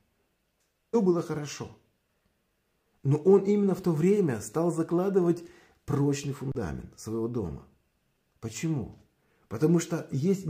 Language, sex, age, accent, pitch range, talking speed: Russian, male, 50-69, native, 105-155 Hz, 105 wpm